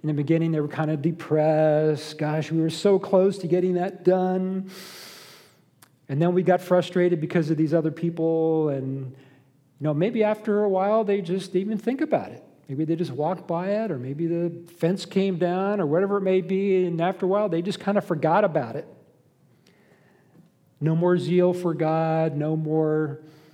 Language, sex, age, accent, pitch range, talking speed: English, male, 40-59, American, 150-190 Hz, 195 wpm